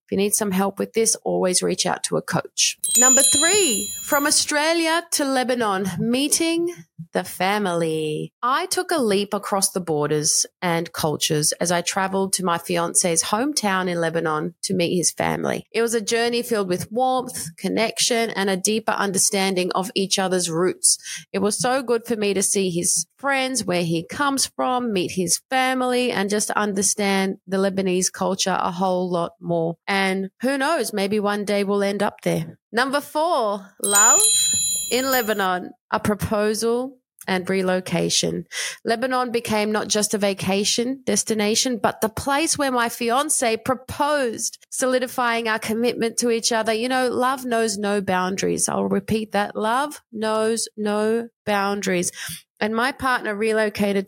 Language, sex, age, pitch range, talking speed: English, female, 30-49, 185-235 Hz, 160 wpm